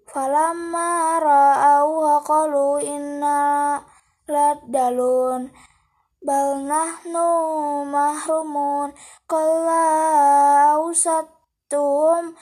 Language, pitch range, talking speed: Indonesian, 285-325 Hz, 55 wpm